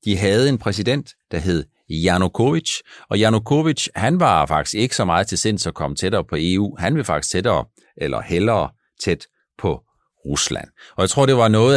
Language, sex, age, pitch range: Danish, male, 60-79, 85-125 Hz